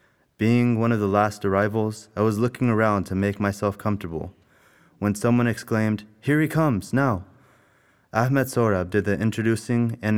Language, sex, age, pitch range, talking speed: English, male, 20-39, 100-120 Hz, 160 wpm